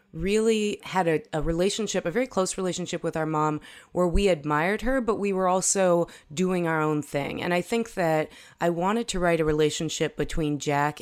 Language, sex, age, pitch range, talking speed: English, female, 30-49, 150-180 Hz, 195 wpm